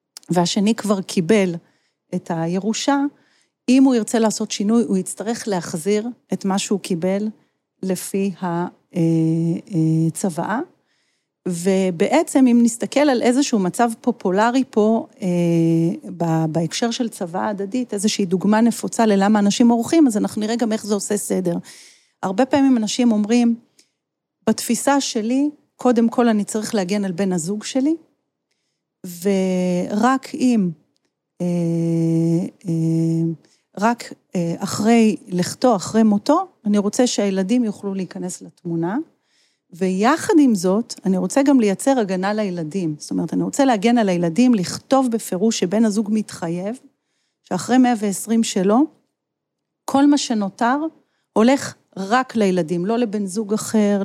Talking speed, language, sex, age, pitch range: 125 wpm, Hebrew, female, 40-59, 185-235 Hz